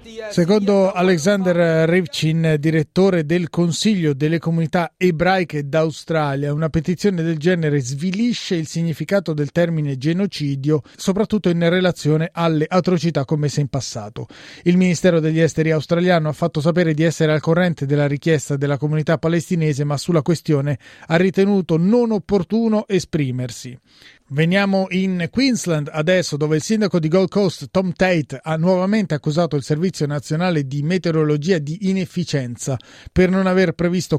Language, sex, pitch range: Italian, male, 150-180 Hz